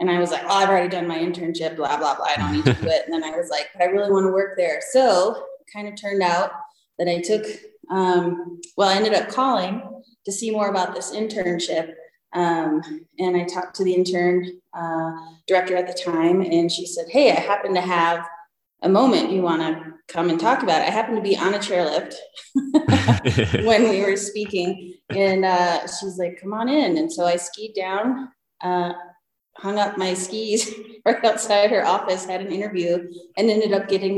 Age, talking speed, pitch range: 20-39, 210 wpm, 170-200 Hz